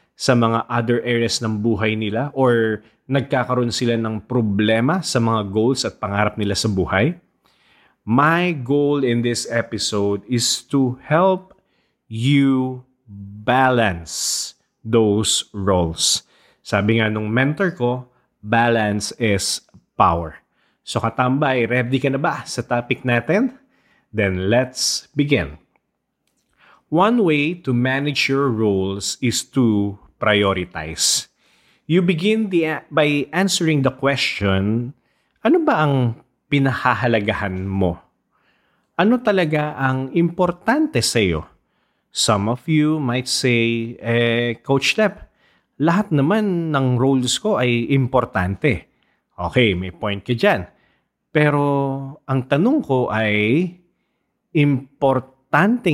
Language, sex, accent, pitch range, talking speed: English, male, Filipino, 110-145 Hz, 115 wpm